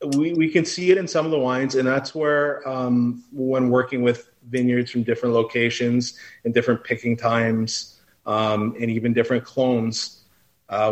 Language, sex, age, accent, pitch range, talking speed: English, male, 30-49, American, 105-130 Hz, 170 wpm